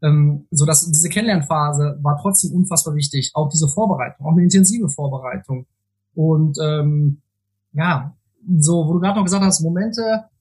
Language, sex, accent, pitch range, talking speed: German, male, German, 145-175 Hz, 155 wpm